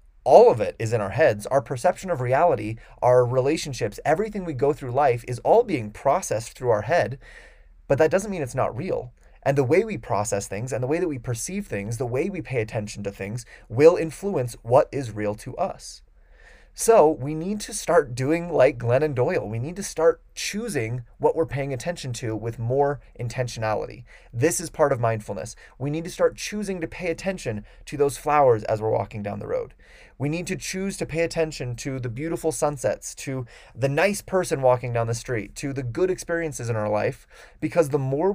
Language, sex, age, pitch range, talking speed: English, male, 30-49, 115-160 Hz, 205 wpm